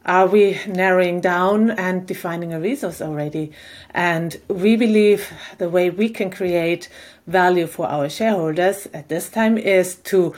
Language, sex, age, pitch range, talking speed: English, female, 30-49, 180-225 Hz, 150 wpm